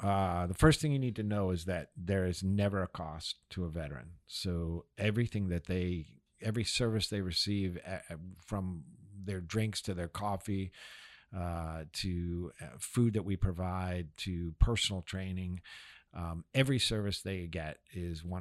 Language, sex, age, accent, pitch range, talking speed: English, male, 50-69, American, 85-105 Hz, 160 wpm